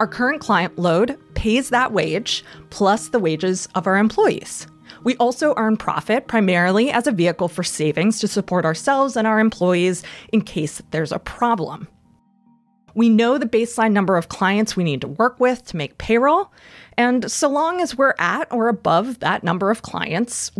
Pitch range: 180-250 Hz